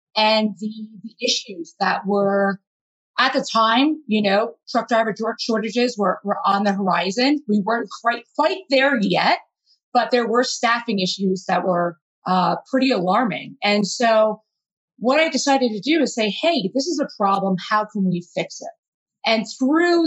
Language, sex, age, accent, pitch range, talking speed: English, female, 30-49, American, 185-245 Hz, 170 wpm